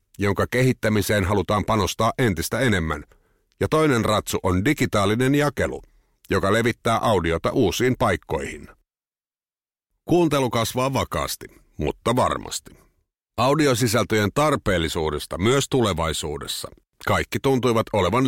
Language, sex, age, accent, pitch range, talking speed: Finnish, male, 50-69, native, 100-130 Hz, 95 wpm